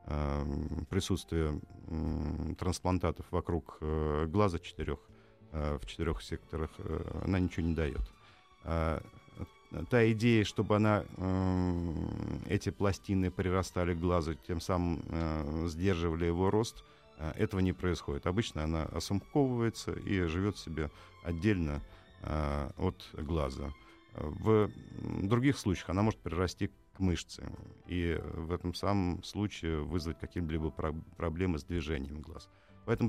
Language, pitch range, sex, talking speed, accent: Russian, 80-100 Hz, male, 105 wpm, native